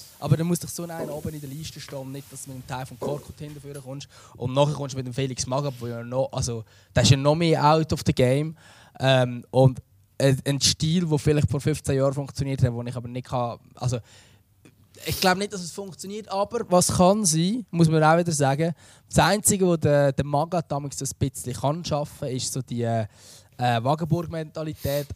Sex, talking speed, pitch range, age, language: male, 205 wpm, 125-155 Hz, 20-39, German